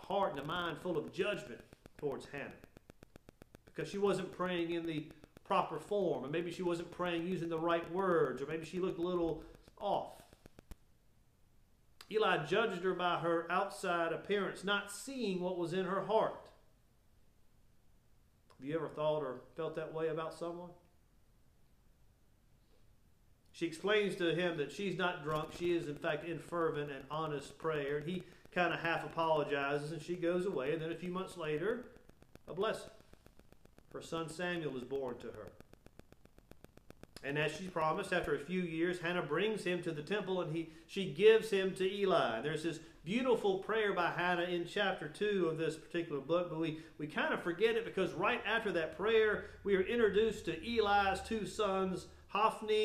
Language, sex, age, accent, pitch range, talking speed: English, male, 40-59, American, 155-190 Hz, 170 wpm